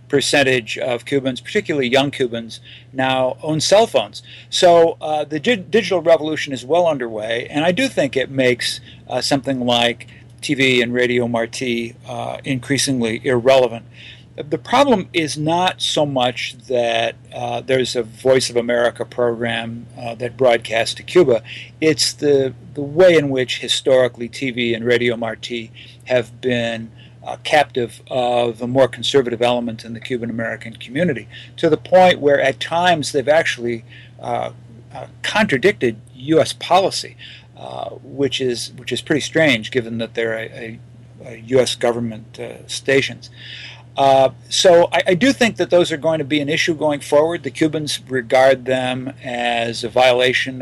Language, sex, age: English, male, 50-69